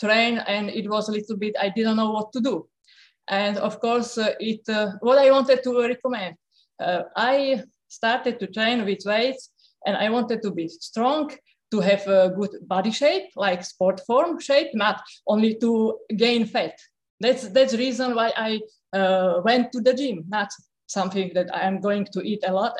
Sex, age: female, 20-39